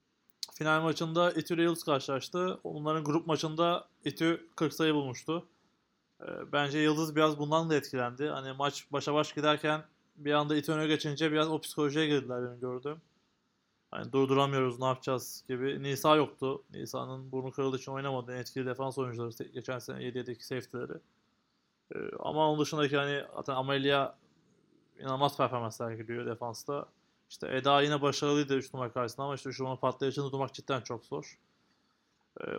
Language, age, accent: Turkish, 20-39, native